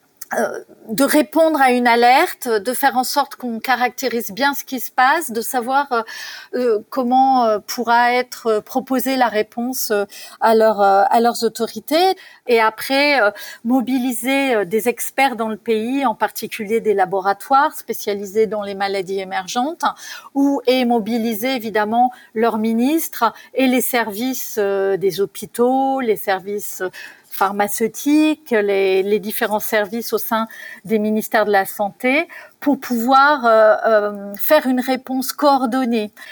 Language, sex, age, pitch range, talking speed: French, female, 40-59, 215-270 Hz, 125 wpm